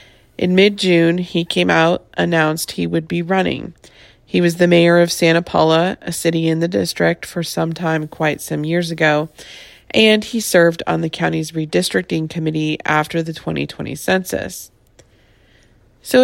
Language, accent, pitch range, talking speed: English, American, 155-175 Hz, 155 wpm